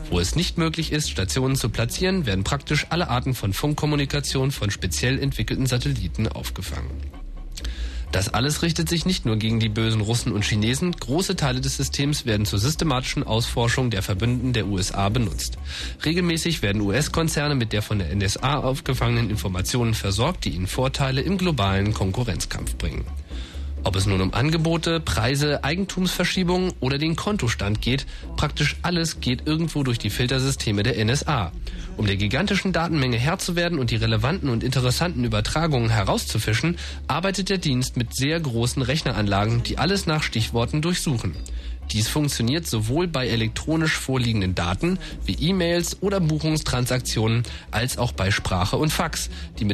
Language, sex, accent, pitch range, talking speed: German, male, German, 105-150 Hz, 150 wpm